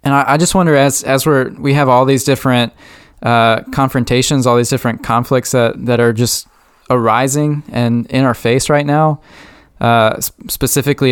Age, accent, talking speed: 20-39, American, 165 wpm